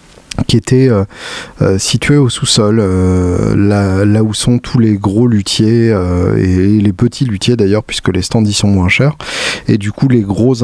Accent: French